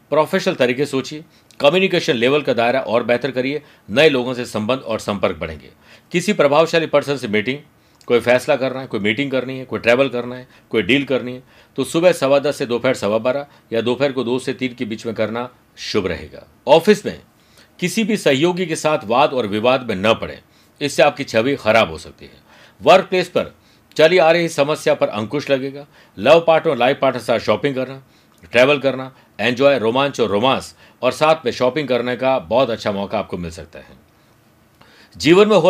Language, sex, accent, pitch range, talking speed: Hindi, male, native, 120-150 Hz, 195 wpm